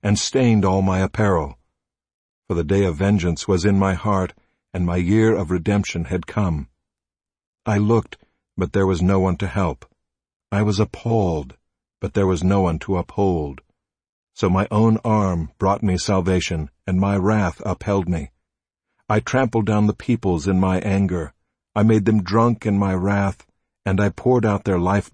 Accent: American